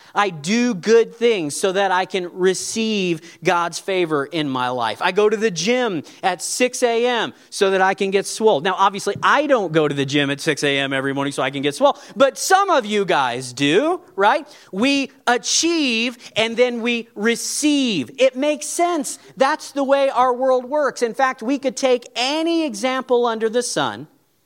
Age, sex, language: 40-59, male, English